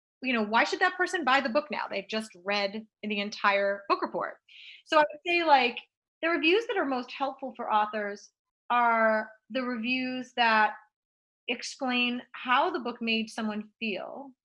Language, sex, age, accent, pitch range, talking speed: English, female, 30-49, American, 205-275 Hz, 170 wpm